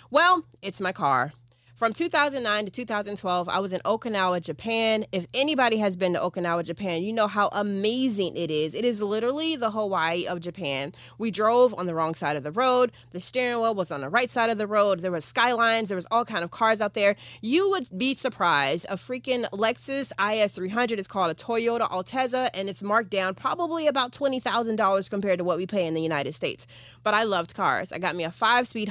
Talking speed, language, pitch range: 210 wpm, English, 180-230 Hz